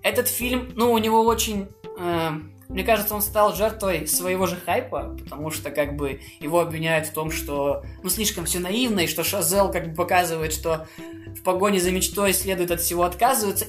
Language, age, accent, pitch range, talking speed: Russian, 20-39, native, 165-210 Hz, 190 wpm